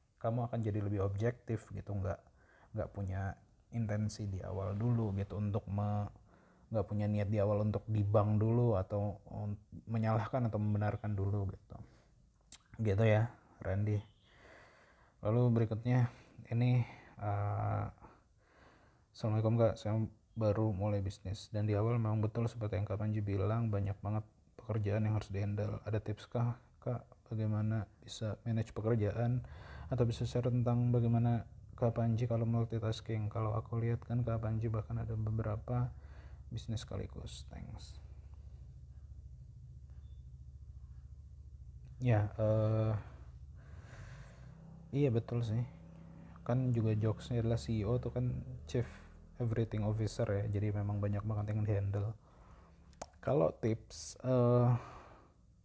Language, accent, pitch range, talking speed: Indonesian, native, 100-115 Hz, 120 wpm